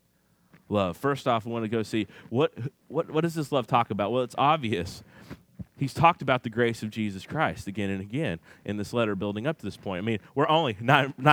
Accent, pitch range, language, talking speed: American, 130-215 Hz, English, 230 wpm